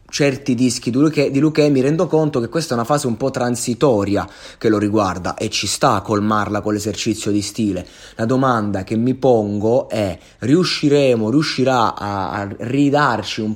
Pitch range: 105-140 Hz